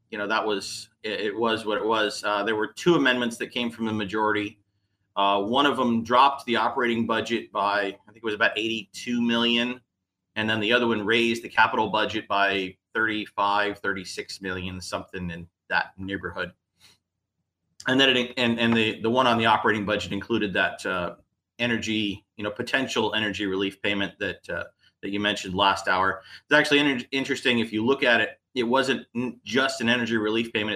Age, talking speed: 30-49, 185 wpm